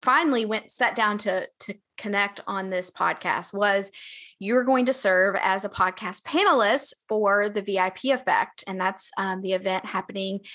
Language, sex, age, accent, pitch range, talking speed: English, female, 20-39, American, 195-245 Hz, 165 wpm